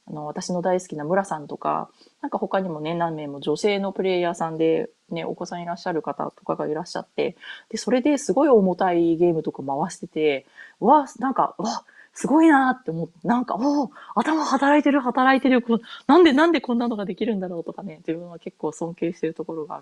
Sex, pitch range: female, 165-235 Hz